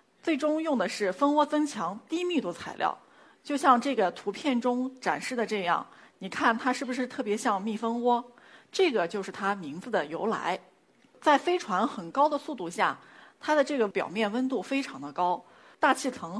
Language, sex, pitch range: Chinese, female, 210-280 Hz